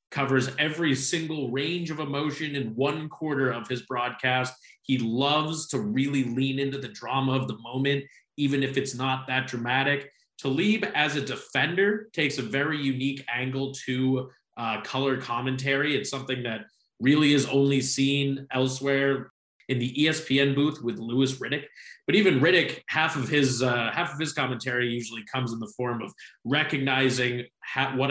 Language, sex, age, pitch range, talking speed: English, male, 20-39, 125-145 Hz, 165 wpm